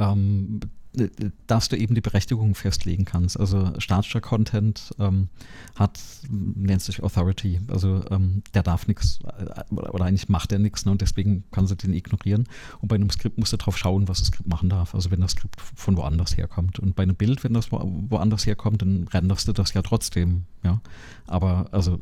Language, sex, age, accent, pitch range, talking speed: German, male, 40-59, German, 90-105 Hz, 190 wpm